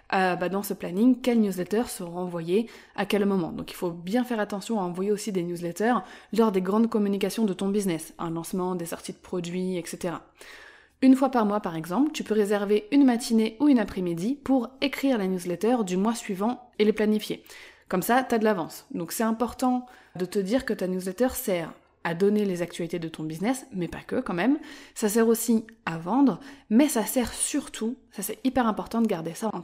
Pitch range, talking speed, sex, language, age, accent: 190-245 Hz, 215 wpm, female, French, 20-39, French